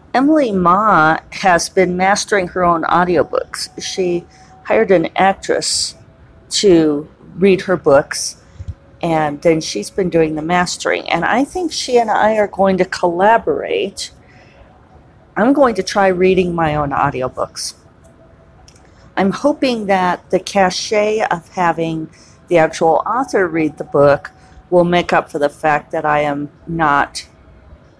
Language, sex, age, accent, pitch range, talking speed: English, female, 40-59, American, 145-185 Hz, 135 wpm